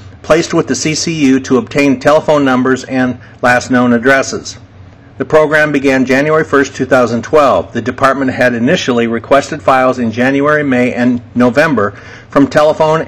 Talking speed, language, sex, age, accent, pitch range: 140 wpm, English, male, 50-69, American, 125-145 Hz